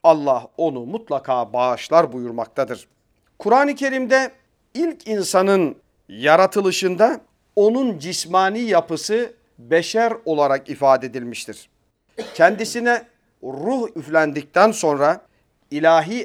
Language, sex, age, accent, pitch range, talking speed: Turkish, male, 40-59, native, 145-225 Hz, 80 wpm